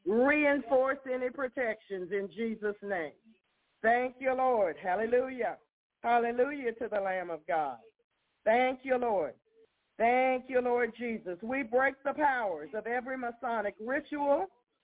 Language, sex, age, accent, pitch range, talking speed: English, female, 50-69, American, 225-270 Hz, 125 wpm